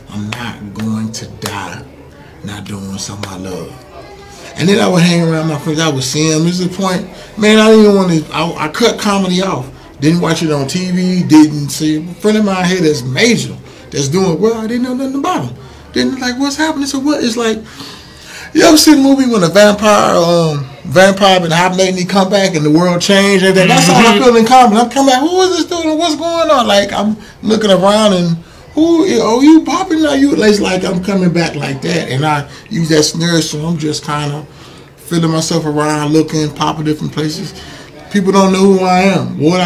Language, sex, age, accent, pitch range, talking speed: English, male, 30-49, American, 150-195 Hz, 225 wpm